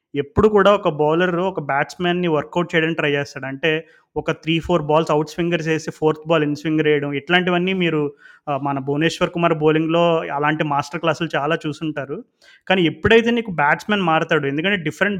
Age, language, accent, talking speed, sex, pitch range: 20-39, Telugu, native, 165 wpm, male, 150-175 Hz